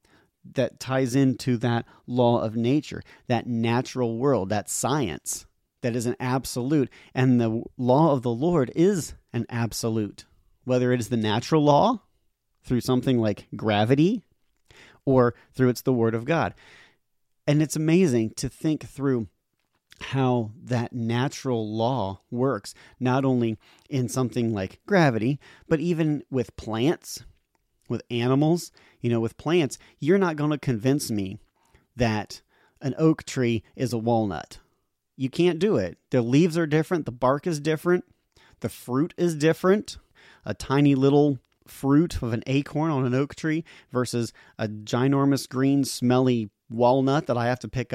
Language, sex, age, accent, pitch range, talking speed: English, male, 40-59, American, 115-140 Hz, 150 wpm